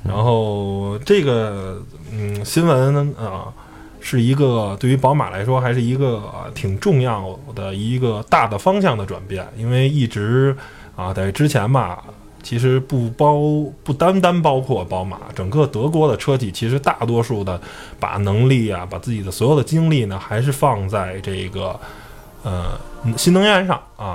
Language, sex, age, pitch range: Chinese, male, 20-39, 100-130 Hz